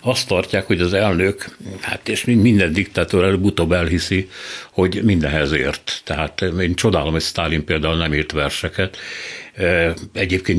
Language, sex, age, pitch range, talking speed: Hungarian, male, 60-79, 85-105 Hz, 135 wpm